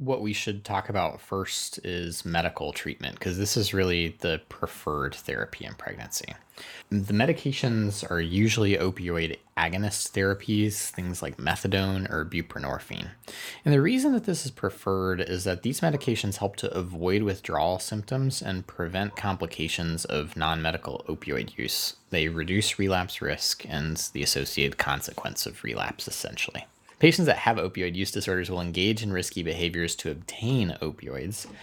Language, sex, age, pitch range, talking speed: English, male, 20-39, 85-105 Hz, 150 wpm